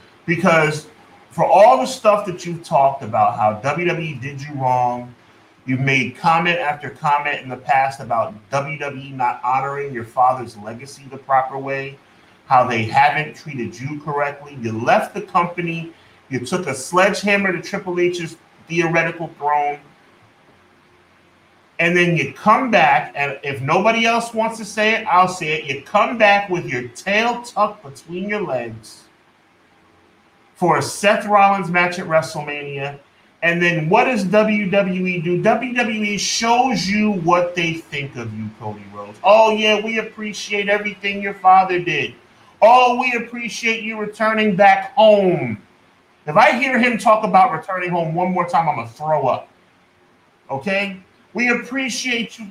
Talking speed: 155 wpm